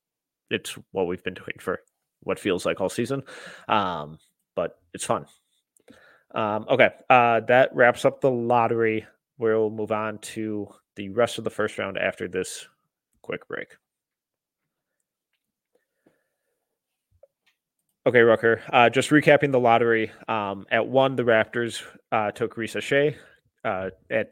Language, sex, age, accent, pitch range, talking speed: English, male, 30-49, American, 110-130 Hz, 135 wpm